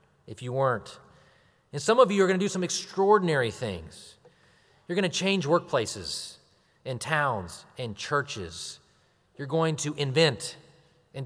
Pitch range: 100-155 Hz